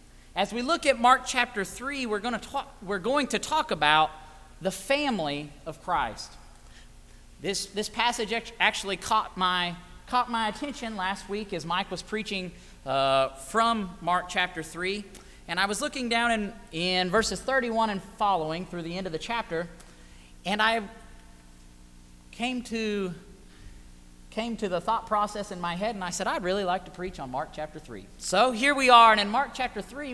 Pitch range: 165-230 Hz